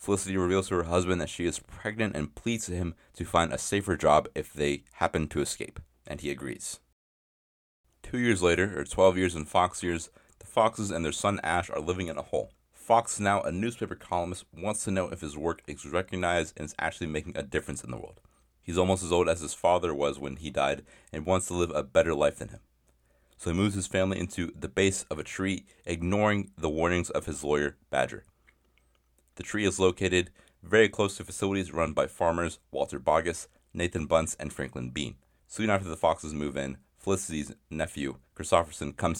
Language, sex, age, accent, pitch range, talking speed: English, male, 30-49, American, 75-95 Hz, 205 wpm